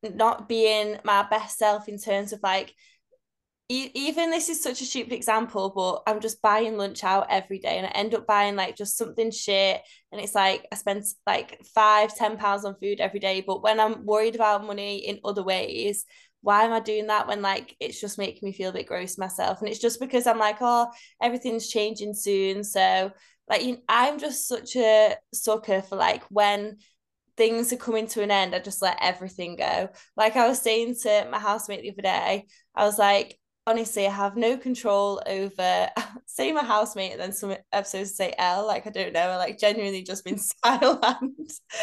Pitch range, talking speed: 200-230 Hz, 200 wpm